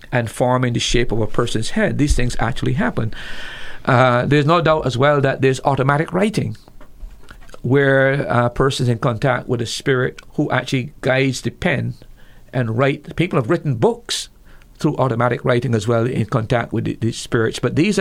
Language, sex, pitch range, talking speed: English, male, 120-145 Hz, 180 wpm